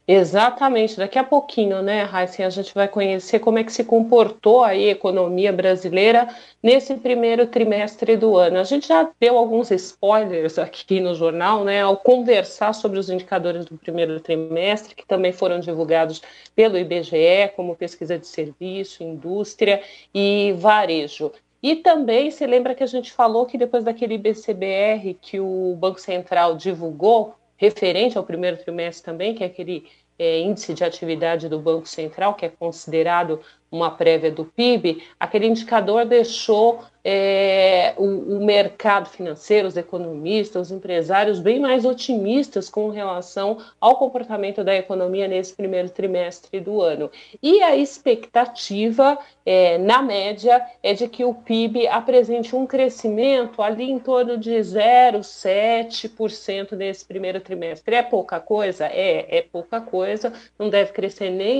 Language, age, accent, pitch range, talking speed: Portuguese, 40-59, Brazilian, 180-235 Hz, 145 wpm